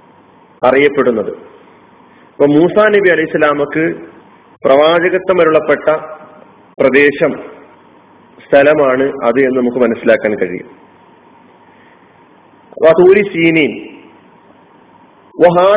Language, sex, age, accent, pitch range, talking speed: Malayalam, male, 40-59, native, 130-160 Hz, 50 wpm